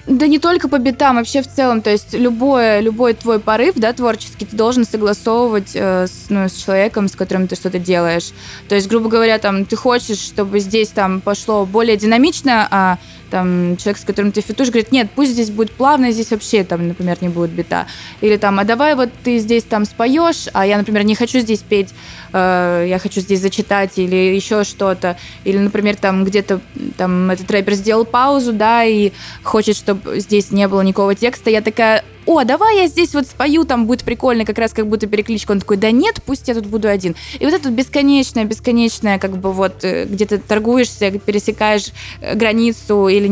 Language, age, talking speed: Russian, 20-39, 195 wpm